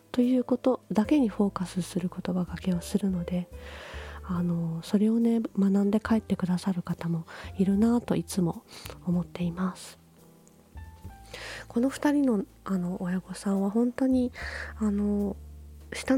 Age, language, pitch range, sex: 20-39, Japanese, 180-225 Hz, female